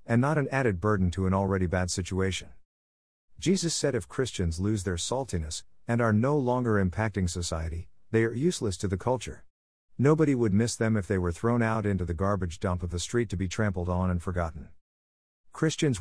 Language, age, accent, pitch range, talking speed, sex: English, 50-69, American, 90-115 Hz, 195 wpm, male